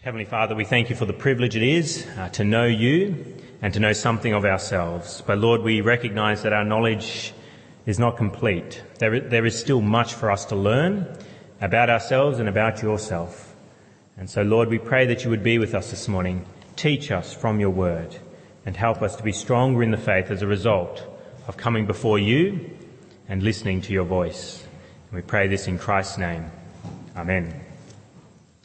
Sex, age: male, 30-49